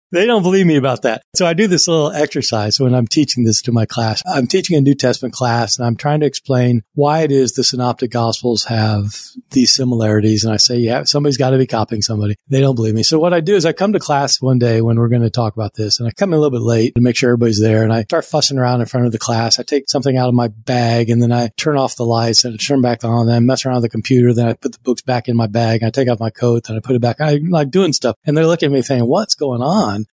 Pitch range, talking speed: 120-155 Hz, 305 wpm